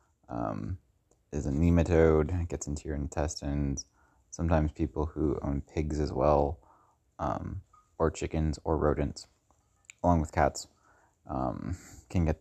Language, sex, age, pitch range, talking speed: English, male, 20-39, 80-90 Hz, 125 wpm